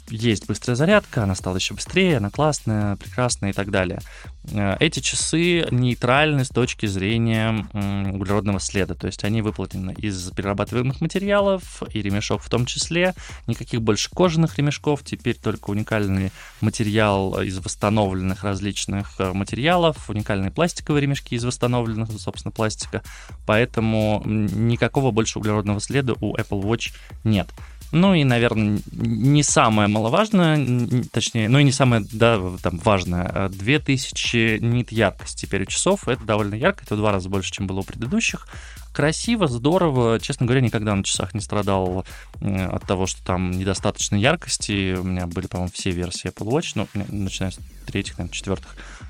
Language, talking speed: Russian, 150 wpm